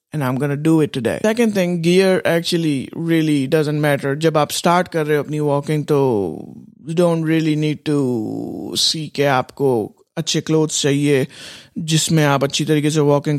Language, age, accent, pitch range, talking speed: English, 20-39, Indian, 145-170 Hz, 160 wpm